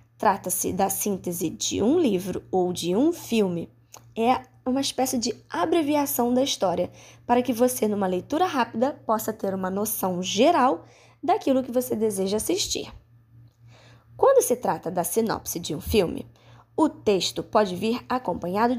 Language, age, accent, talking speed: Portuguese, 20-39, Brazilian, 145 wpm